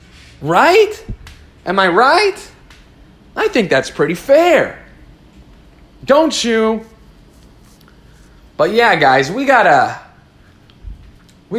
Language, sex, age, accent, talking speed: English, male, 30-49, American, 90 wpm